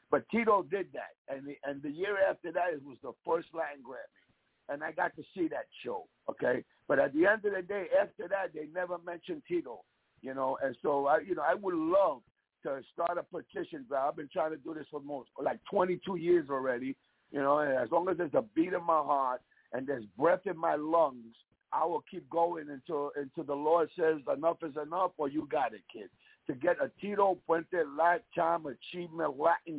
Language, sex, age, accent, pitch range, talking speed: English, male, 60-79, American, 150-195 Hz, 220 wpm